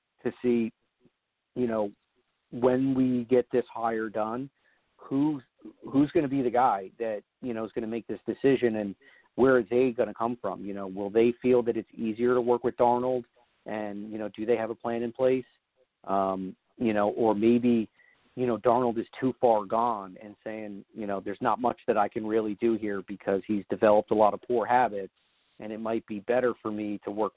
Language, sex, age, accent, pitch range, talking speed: English, male, 40-59, American, 105-120 Hz, 215 wpm